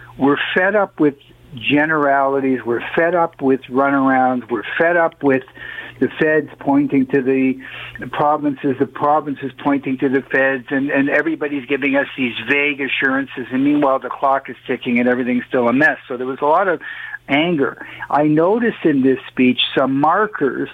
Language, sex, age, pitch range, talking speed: English, male, 60-79, 130-150 Hz, 175 wpm